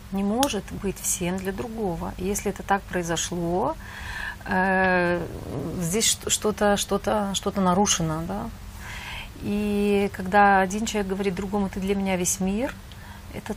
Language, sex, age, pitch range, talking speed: Russian, female, 30-49, 175-215 Hz, 130 wpm